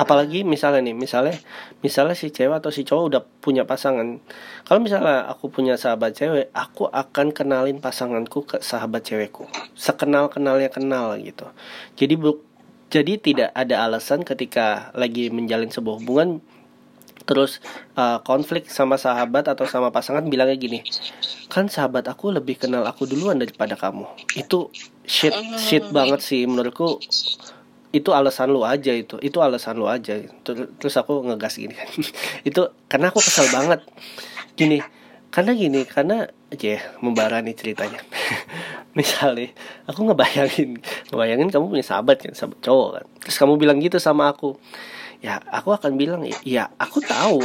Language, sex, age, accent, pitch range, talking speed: Indonesian, male, 20-39, native, 125-150 Hz, 150 wpm